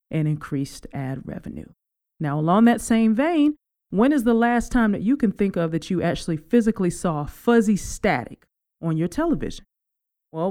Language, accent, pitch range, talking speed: English, American, 155-215 Hz, 170 wpm